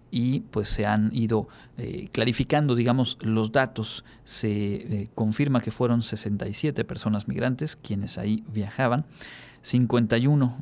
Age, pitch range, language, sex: 40-59, 105-125 Hz, Spanish, male